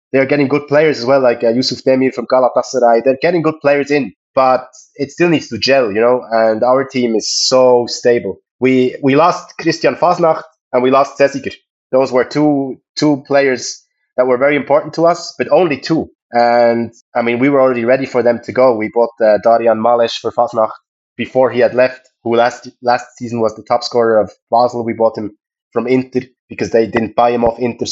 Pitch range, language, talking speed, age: 115-130 Hz, Hebrew, 210 wpm, 20-39